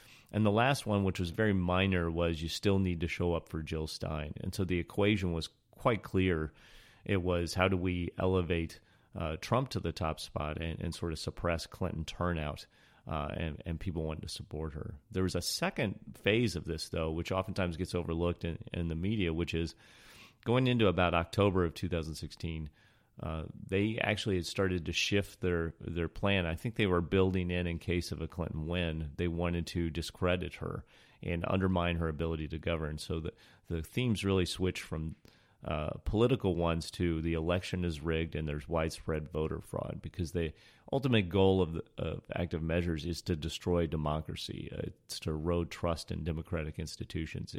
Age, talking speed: 30-49, 190 wpm